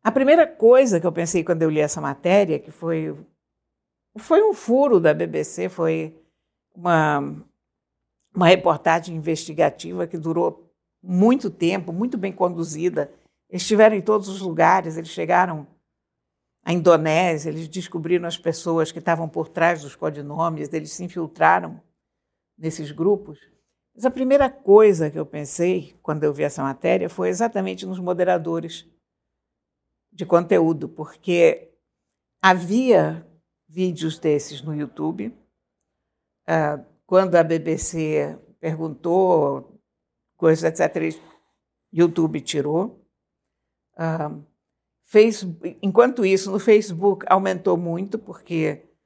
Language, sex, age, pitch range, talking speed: Portuguese, female, 60-79, 155-185 Hz, 115 wpm